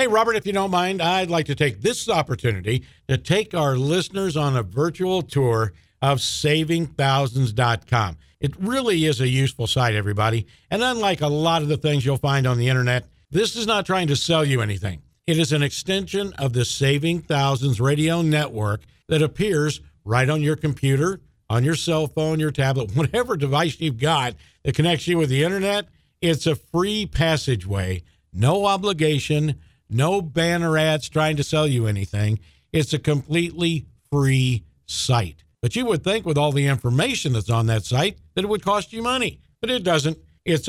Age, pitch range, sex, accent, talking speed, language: 50-69, 125-170 Hz, male, American, 180 wpm, English